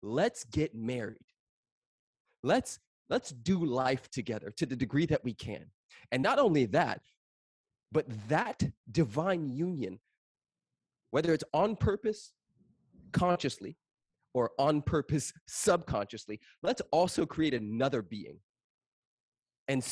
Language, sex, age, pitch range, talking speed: English, male, 30-49, 100-140 Hz, 110 wpm